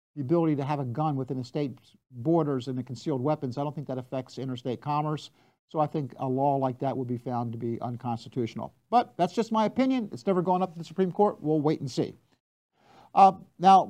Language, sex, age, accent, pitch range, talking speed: English, male, 50-69, American, 135-175 Hz, 230 wpm